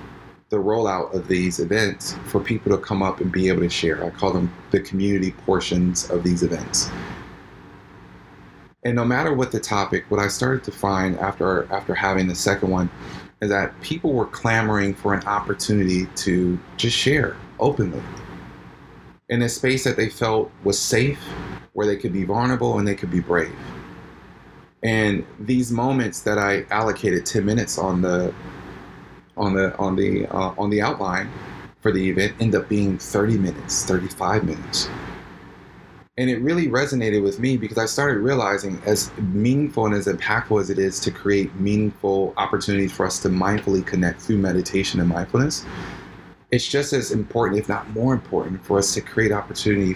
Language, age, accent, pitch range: English, 30-49, American, 95-110 Hz